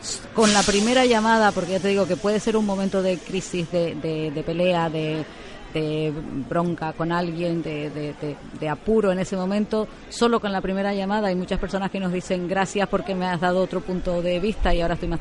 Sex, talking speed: female, 220 wpm